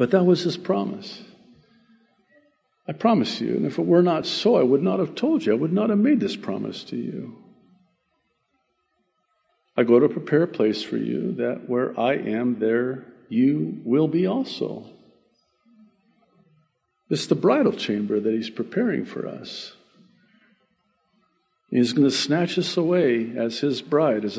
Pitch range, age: 115-175 Hz, 50-69